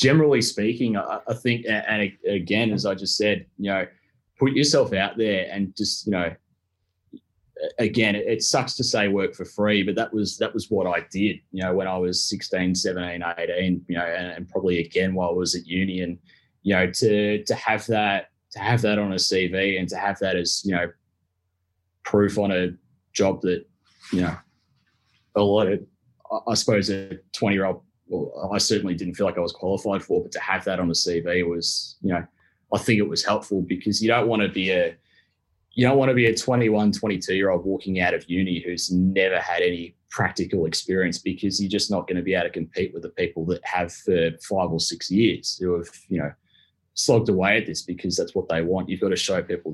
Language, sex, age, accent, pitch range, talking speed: English, male, 20-39, Australian, 90-105 Hz, 215 wpm